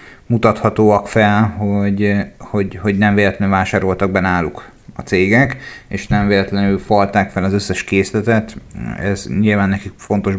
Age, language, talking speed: 30-49, Hungarian, 135 wpm